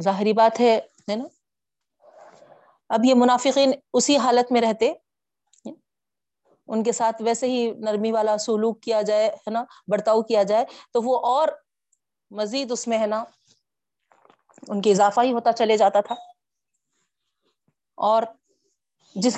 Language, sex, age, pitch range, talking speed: Urdu, female, 30-49, 205-265 Hz, 140 wpm